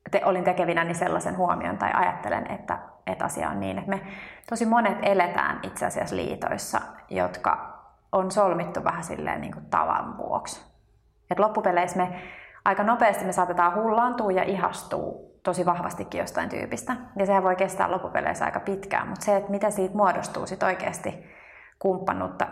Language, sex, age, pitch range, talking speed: Finnish, female, 30-49, 175-205 Hz, 155 wpm